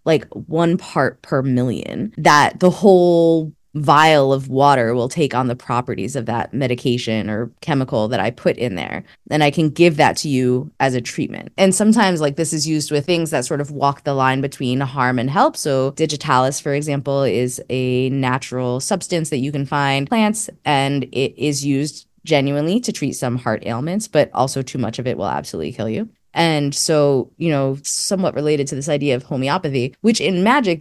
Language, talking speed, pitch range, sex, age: English, 195 wpm, 125-155 Hz, female, 20-39